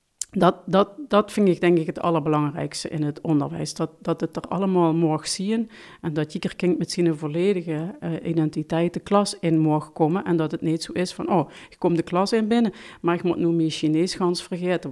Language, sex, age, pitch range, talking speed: Dutch, female, 50-69, 160-200 Hz, 225 wpm